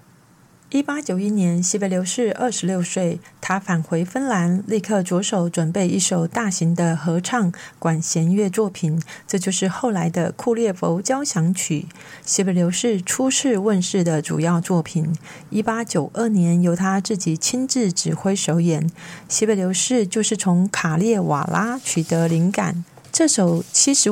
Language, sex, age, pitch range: Chinese, female, 40-59, 175-220 Hz